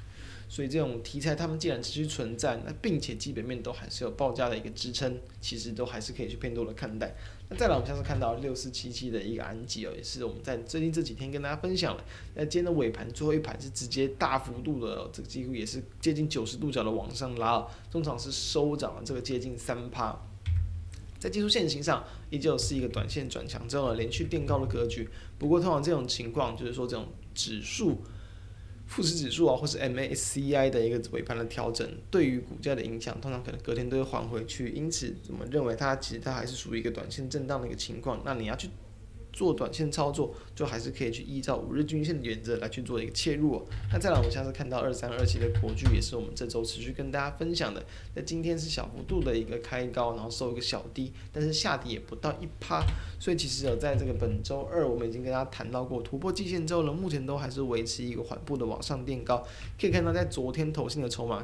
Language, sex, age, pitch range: Chinese, male, 20-39, 115-140 Hz